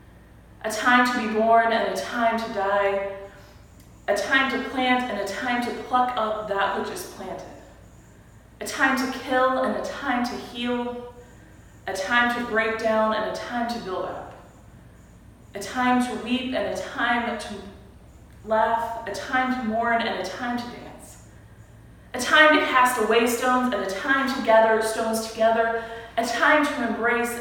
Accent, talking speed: American, 175 wpm